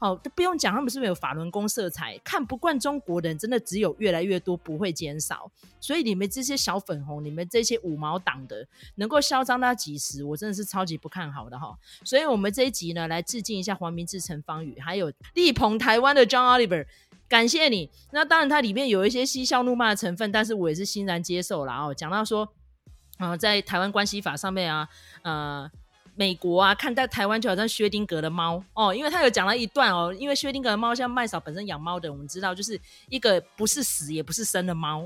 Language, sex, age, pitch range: Chinese, female, 20-39, 165-245 Hz